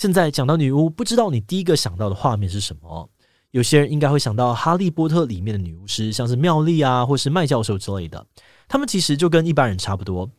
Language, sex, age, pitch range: Chinese, male, 20-39, 105-150 Hz